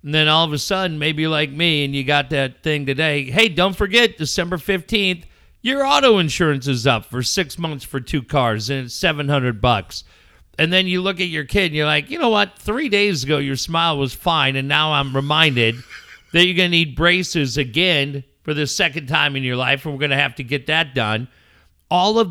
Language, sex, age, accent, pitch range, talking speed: English, male, 50-69, American, 125-165 Hz, 230 wpm